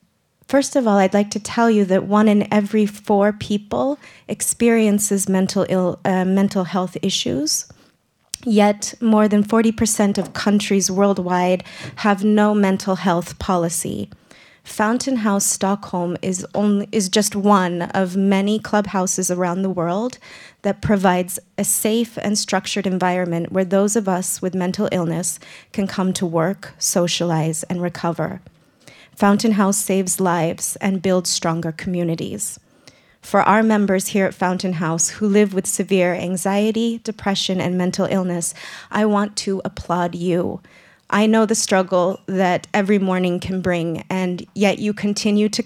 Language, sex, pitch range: Swedish, female, 180-205 Hz